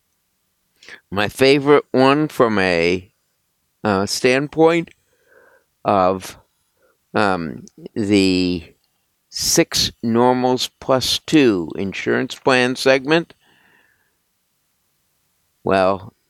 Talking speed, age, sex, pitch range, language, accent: 65 wpm, 60-79, male, 95-125 Hz, English, American